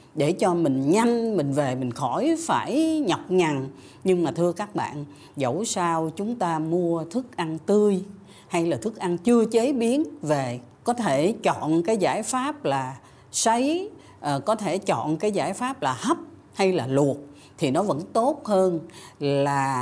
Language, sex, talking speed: Vietnamese, female, 175 wpm